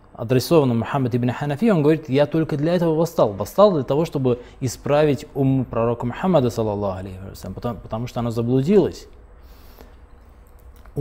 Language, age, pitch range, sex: Russian, 20-39, 100-140 Hz, male